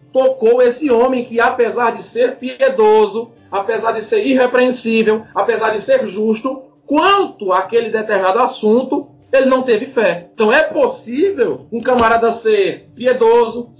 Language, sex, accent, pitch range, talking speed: Portuguese, male, Brazilian, 215-255 Hz, 135 wpm